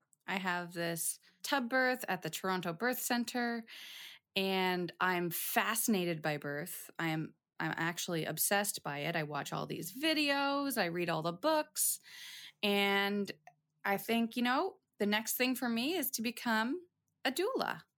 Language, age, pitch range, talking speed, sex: English, 20-39, 165-230 Hz, 155 wpm, female